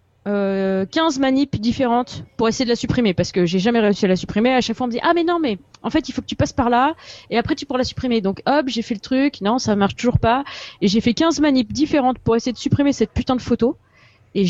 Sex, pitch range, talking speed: female, 195-265 Hz, 280 wpm